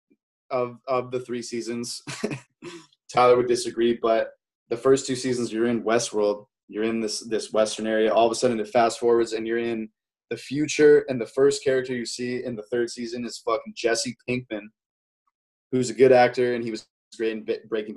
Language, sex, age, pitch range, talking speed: English, male, 20-39, 110-125 Hz, 195 wpm